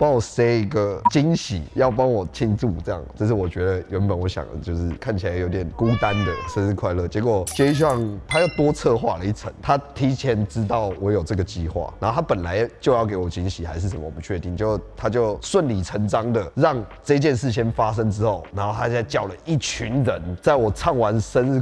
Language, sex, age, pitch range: Chinese, male, 20-39, 90-120 Hz